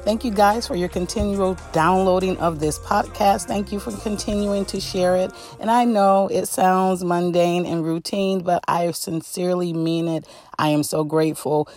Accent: American